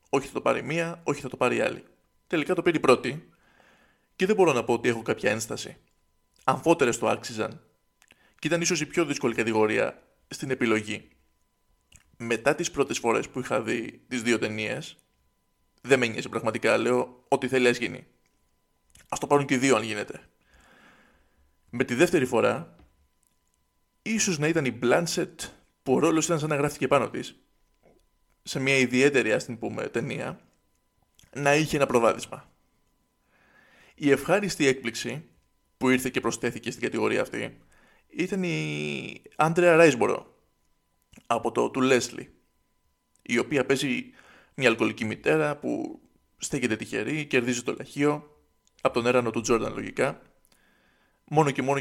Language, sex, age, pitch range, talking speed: Greek, male, 20-39, 110-145 Hz, 150 wpm